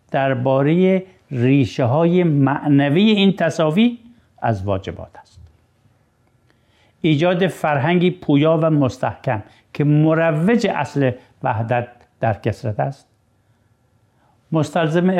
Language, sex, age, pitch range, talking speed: Persian, male, 60-79, 125-175 Hz, 85 wpm